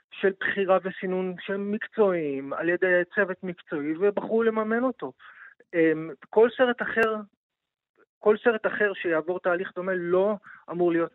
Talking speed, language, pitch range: 130 wpm, Hebrew, 155-195 Hz